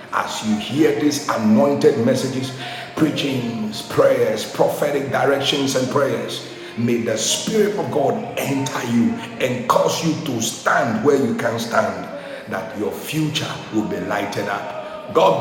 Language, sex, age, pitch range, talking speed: English, male, 50-69, 120-150 Hz, 140 wpm